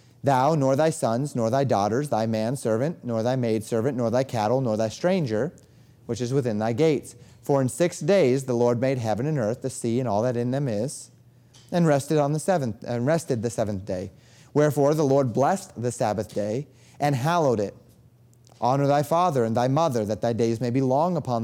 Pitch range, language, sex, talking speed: 115-140 Hz, English, male, 205 wpm